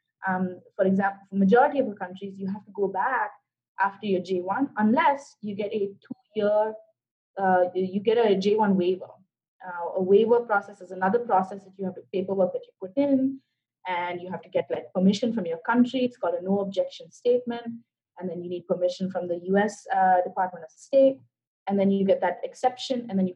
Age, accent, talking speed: 20-39, Indian, 205 wpm